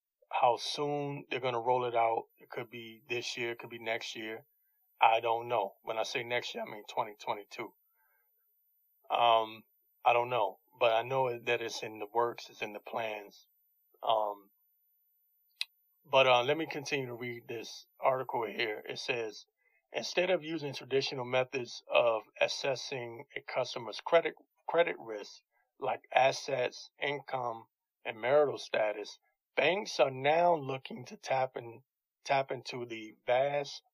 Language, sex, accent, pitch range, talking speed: English, male, American, 120-150 Hz, 155 wpm